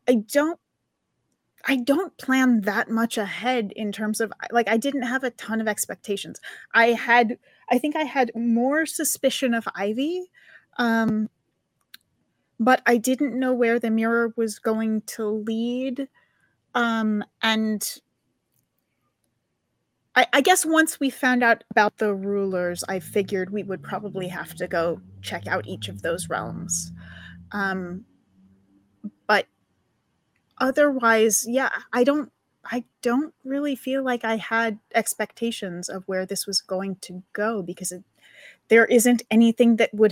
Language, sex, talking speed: English, female, 140 wpm